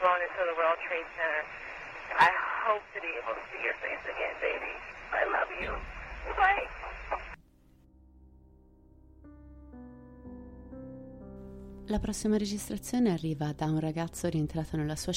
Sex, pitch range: female, 135-170 Hz